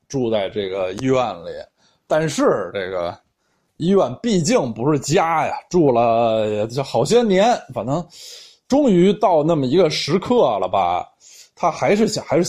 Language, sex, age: Chinese, male, 20-39